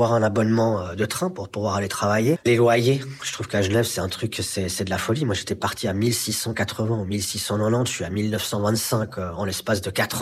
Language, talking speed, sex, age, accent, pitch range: French, 215 wpm, male, 30-49, French, 105-120 Hz